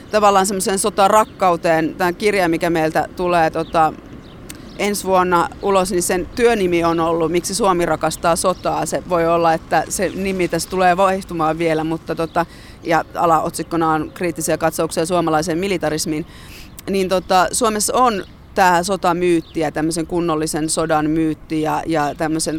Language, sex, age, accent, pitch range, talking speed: Finnish, female, 30-49, native, 160-190 Hz, 135 wpm